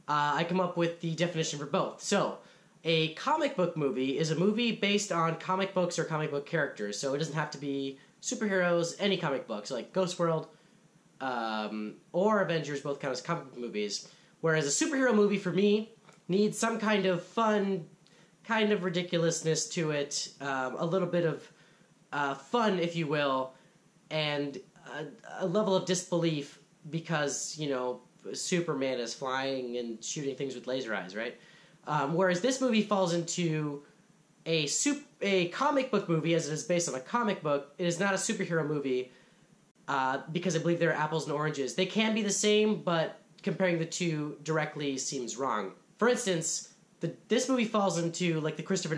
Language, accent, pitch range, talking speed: English, American, 145-190 Hz, 185 wpm